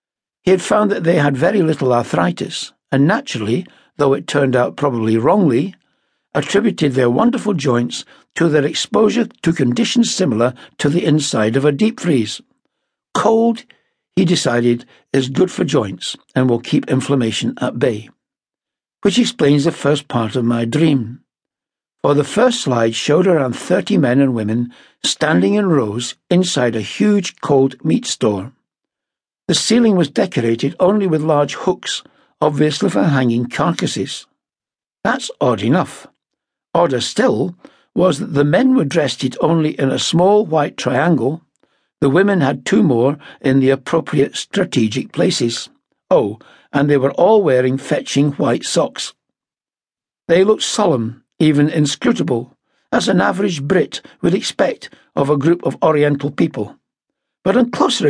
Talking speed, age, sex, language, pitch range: 145 wpm, 60-79, male, English, 130-200 Hz